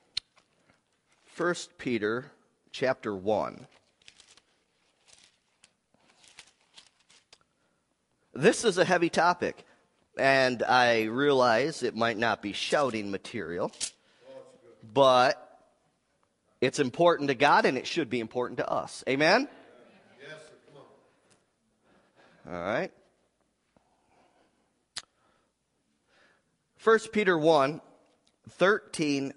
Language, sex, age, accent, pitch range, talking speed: English, male, 40-59, American, 125-195 Hz, 80 wpm